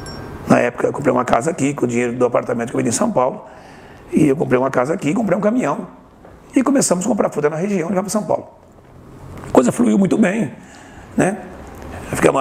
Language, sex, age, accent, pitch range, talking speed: Portuguese, male, 60-79, Brazilian, 125-200 Hz, 220 wpm